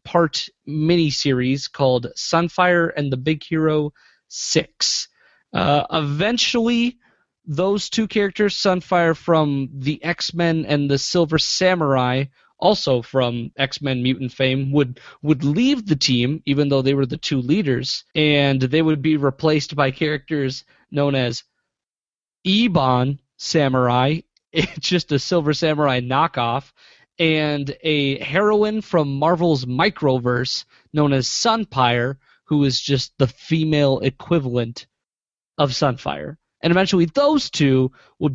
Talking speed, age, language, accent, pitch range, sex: 120 wpm, 30-49, English, American, 135-165 Hz, male